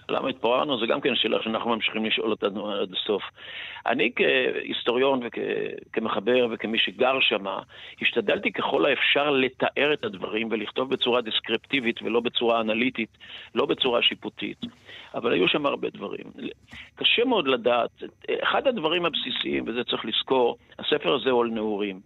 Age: 50-69